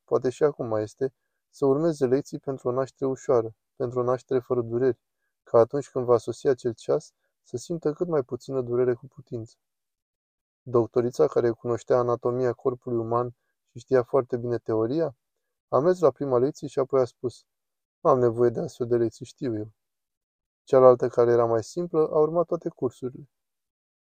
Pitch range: 120-135 Hz